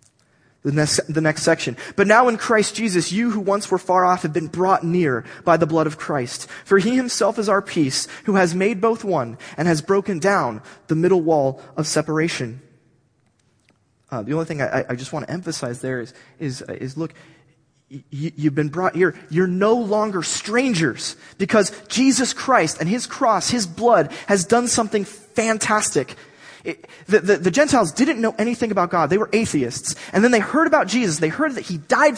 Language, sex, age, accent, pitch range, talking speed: English, male, 30-49, American, 160-250 Hz, 195 wpm